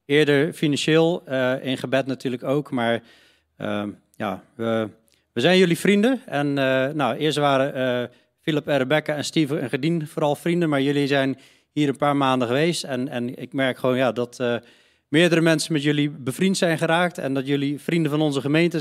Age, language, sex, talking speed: 40-59, Dutch, male, 190 wpm